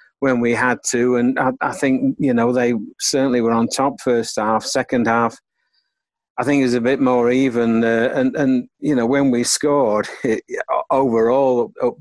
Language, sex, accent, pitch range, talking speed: English, male, British, 115-135 Hz, 190 wpm